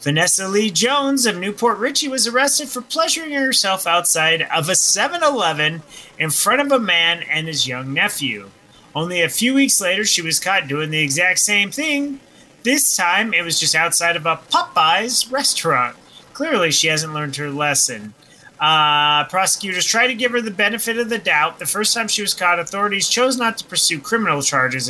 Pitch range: 155-220 Hz